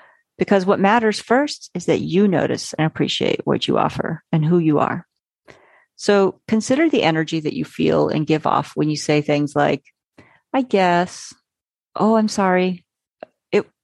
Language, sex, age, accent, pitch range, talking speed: English, female, 40-59, American, 160-210 Hz, 165 wpm